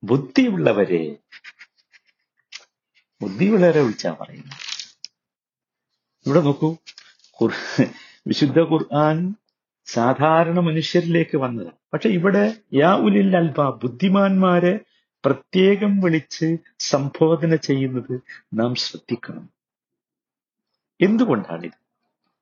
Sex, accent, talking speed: male, native, 65 wpm